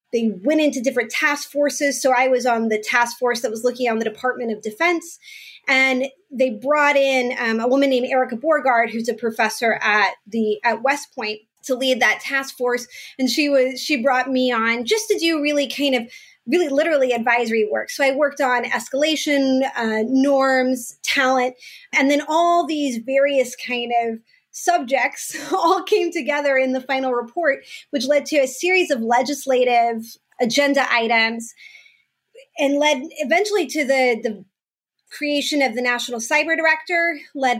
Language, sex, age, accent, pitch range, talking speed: English, female, 20-39, American, 240-295 Hz, 170 wpm